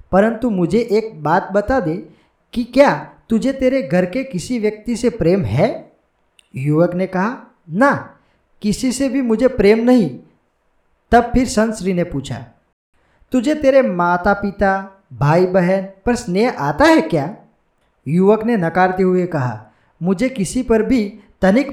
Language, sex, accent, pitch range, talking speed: Gujarati, male, native, 165-235 Hz, 145 wpm